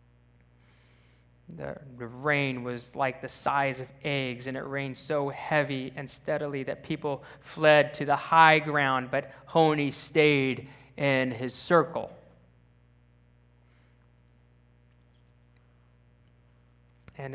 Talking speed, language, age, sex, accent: 100 wpm, English, 20-39, male, American